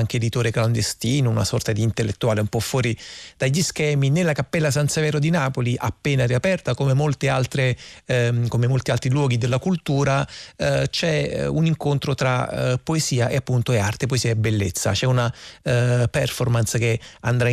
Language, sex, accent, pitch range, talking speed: Italian, male, native, 115-135 Hz, 160 wpm